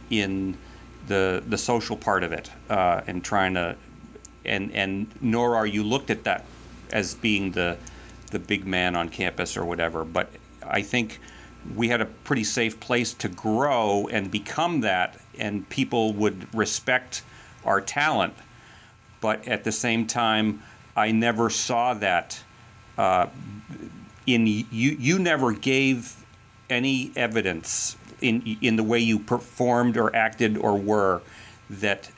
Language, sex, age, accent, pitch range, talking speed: English, male, 40-59, American, 105-120 Hz, 145 wpm